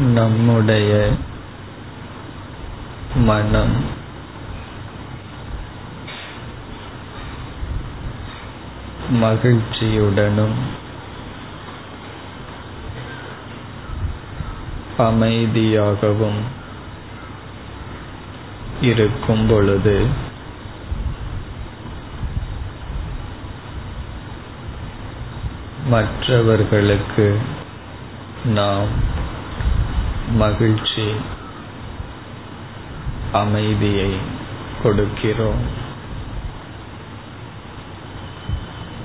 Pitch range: 105-115 Hz